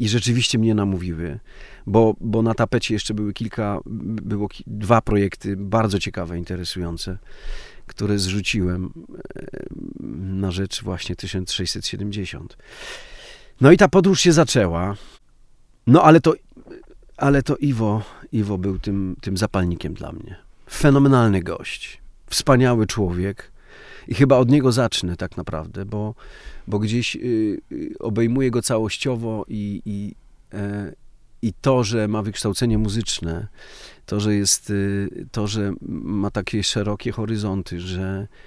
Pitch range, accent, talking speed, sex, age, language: 95-125 Hz, native, 120 wpm, male, 40-59, Polish